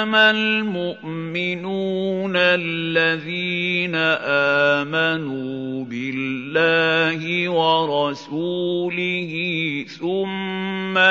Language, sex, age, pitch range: Arabic, male, 50-69, 160-175 Hz